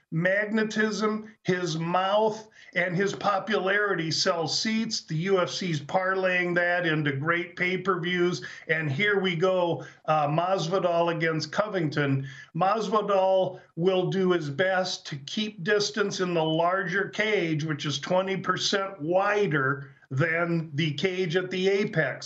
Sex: male